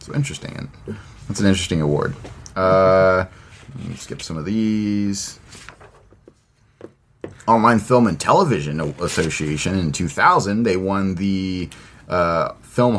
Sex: male